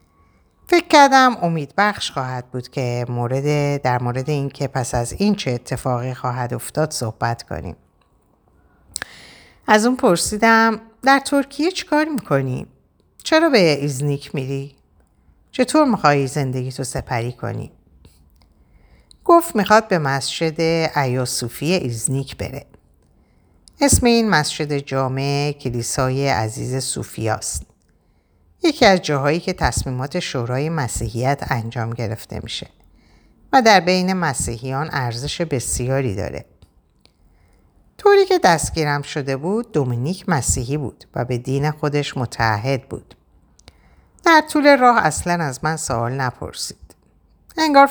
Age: 50-69